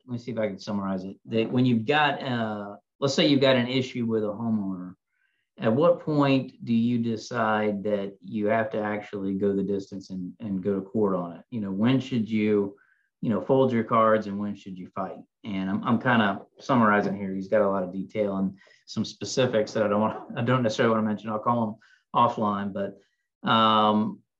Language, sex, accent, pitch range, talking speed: English, male, American, 100-115 Hz, 220 wpm